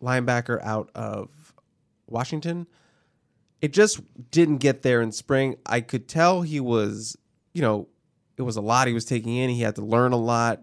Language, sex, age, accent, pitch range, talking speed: English, male, 20-39, American, 110-140 Hz, 180 wpm